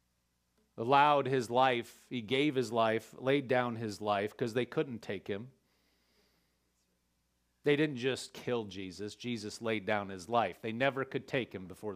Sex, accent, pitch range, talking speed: male, American, 105-130 Hz, 160 wpm